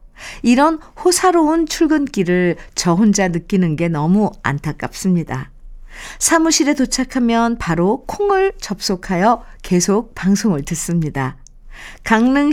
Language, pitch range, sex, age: Korean, 190-280 Hz, female, 50-69